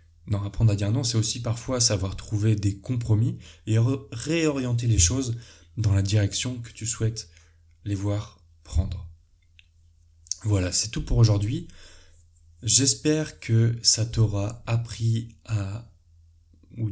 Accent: French